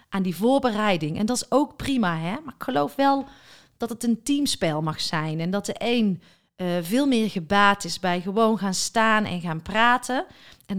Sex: female